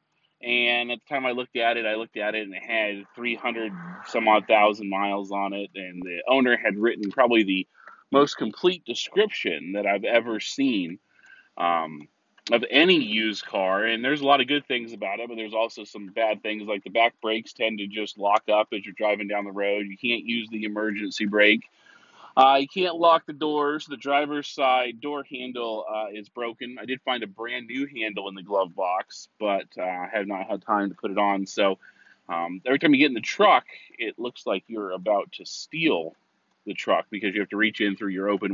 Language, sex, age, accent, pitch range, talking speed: English, male, 20-39, American, 100-135 Hz, 220 wpm